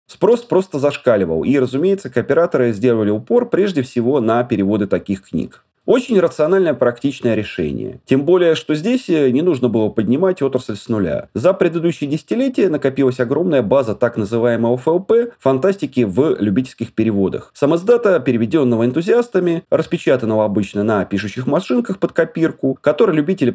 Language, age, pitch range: Russian, 30-49, 110-170 Hz